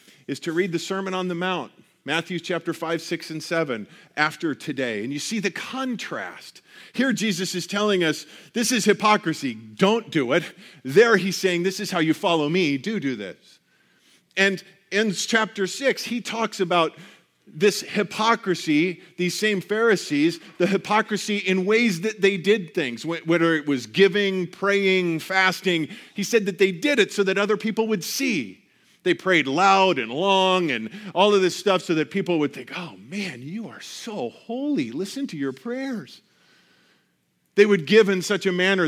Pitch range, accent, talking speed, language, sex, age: 160-205 Hz, American, 175 wpm, English, male, 40-59